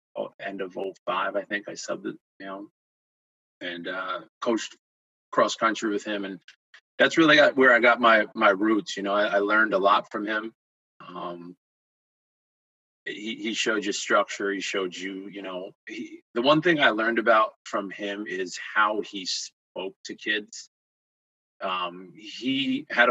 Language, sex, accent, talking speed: English, male, American, 165 wpm